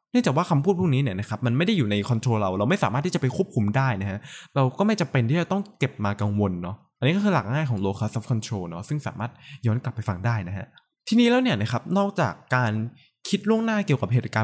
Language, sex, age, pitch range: Thai, male, 20-39, 110-155 Hz